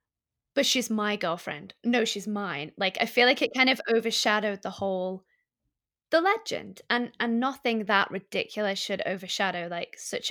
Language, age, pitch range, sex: English, 20-39, 200-245 Hz, female